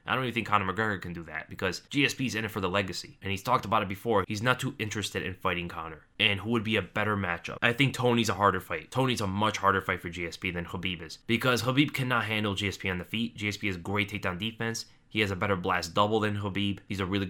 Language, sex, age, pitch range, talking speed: English, male, 20-39, 100-120 Hz, 265 wpm